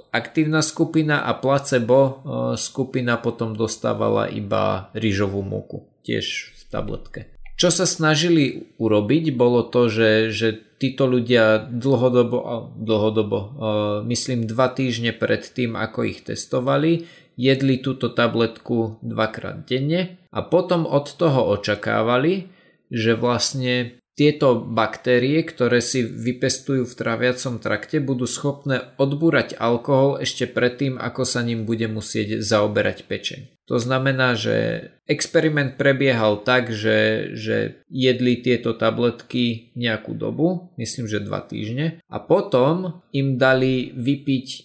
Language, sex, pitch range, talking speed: Slovak, male, 115-140 Hz, 120 wpm